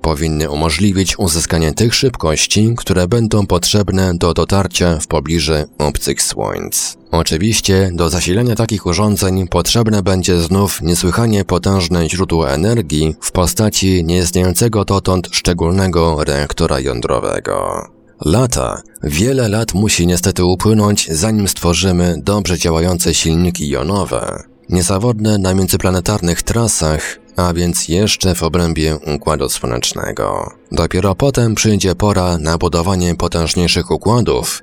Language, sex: Polish, male